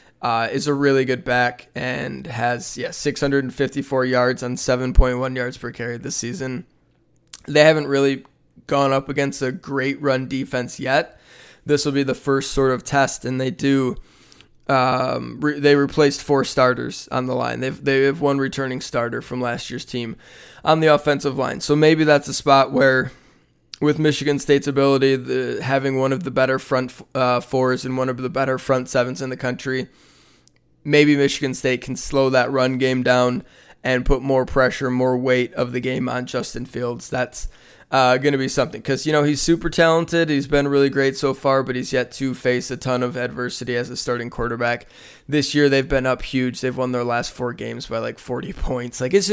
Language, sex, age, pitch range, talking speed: English, male, 20-39, 125-140 Hz, 195 wpm